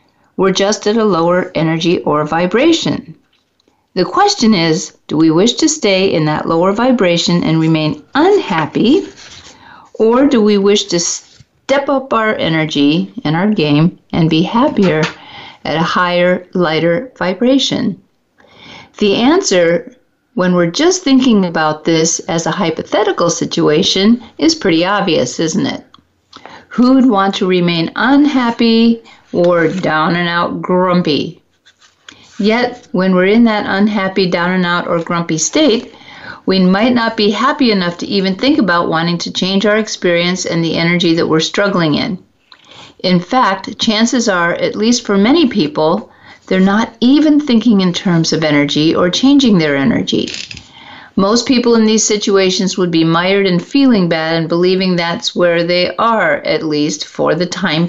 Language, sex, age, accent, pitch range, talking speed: English, female, 50-69, American, 170-230 Hz, 150 wpm